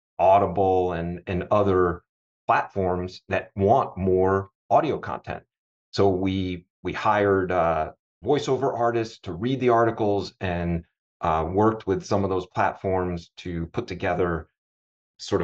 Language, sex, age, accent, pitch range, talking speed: English, male, 30-49, American, 90-105 Hz, 130 wpm